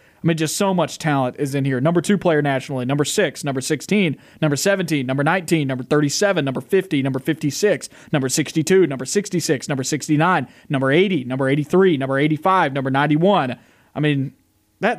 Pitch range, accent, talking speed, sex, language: 145-180 Hz, American, 175 wpm, male, English